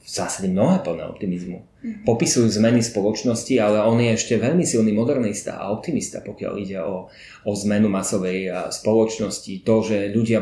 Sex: male